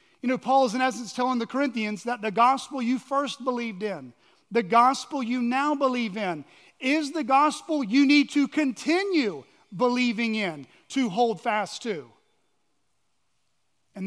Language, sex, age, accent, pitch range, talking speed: English, male, 40-59, American, 165-245 Hz, 155 wpm